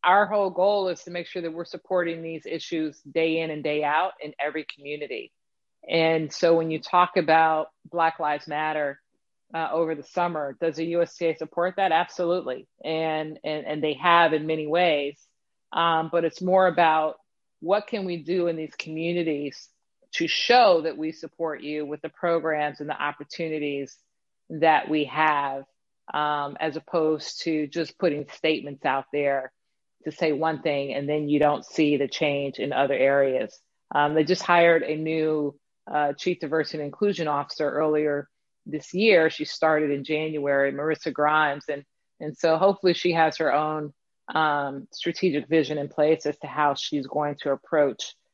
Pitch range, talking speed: 150-170 Hz, 170 wpm